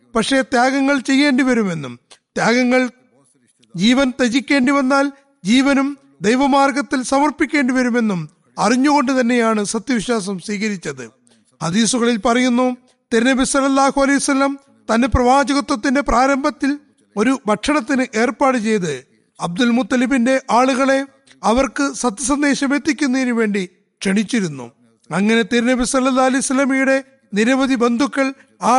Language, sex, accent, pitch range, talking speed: Malayalam, male, native, 225-275 Hz, 90 wpm